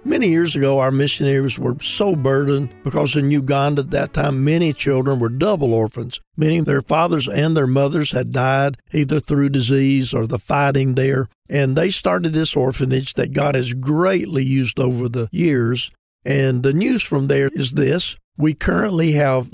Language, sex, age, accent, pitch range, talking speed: English, male, 50-69, American, 130-160 Hz, 175 wpm